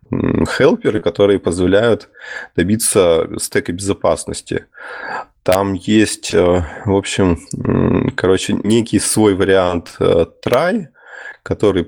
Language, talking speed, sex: Russian, 80 wpm, male